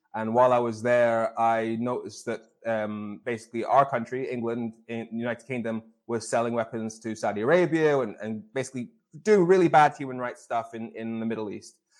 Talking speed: 185 wpm